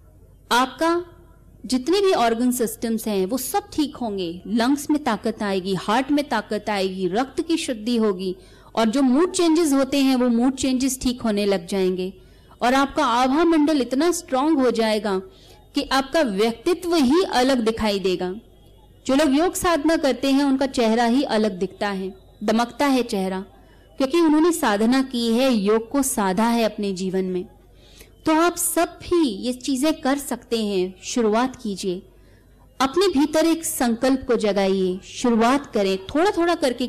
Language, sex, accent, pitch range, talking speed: Hindi, female, native, 210-280 Hz, 160 wpm